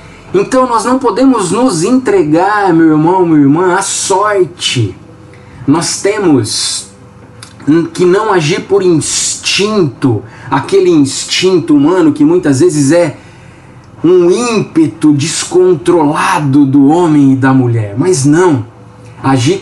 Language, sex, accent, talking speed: Portuguese, male, Brazilian, 115 wpm